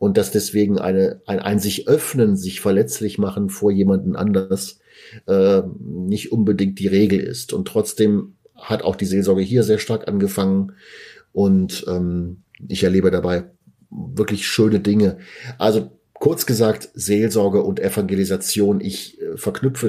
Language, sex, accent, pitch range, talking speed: German, male, German, 95-115 Hz, 140 wpm